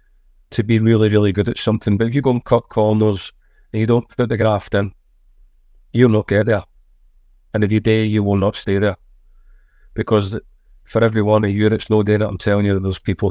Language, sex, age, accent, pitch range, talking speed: English, male, 30-49, British, 95-110 Hz, 225 wpm